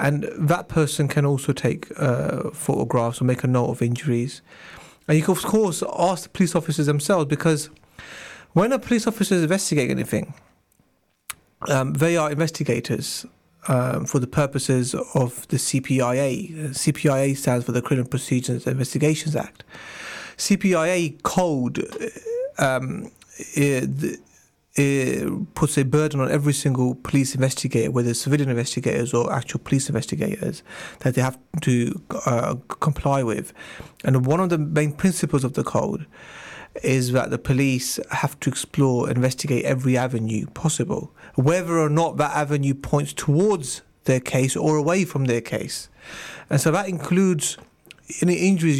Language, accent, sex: English, British, male